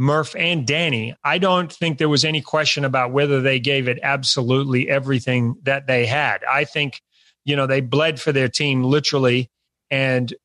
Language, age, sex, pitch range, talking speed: English, 30-49, male, 125-155 Hz, 180 wpm